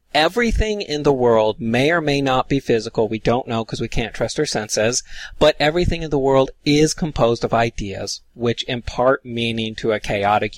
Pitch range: 105-145 Hz